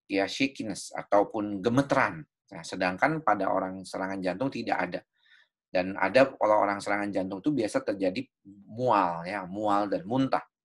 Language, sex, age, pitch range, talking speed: Indonesian, male, 30-49, 95-135 Hz, 150 wpm